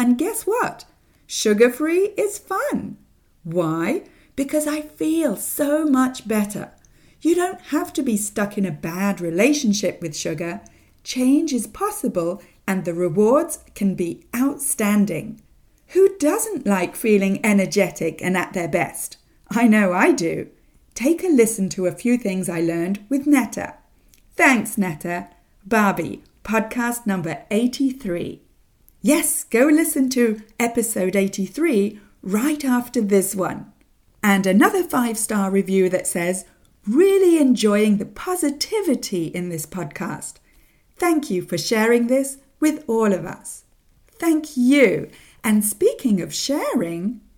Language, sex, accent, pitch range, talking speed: English, female, British, 190-290 Hz, 130 wpm